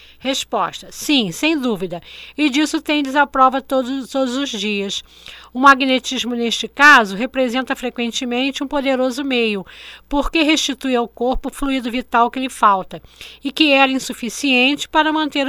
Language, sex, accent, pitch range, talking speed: Portuguese, female, Brazilian, 245-295 Hz, 145 wpm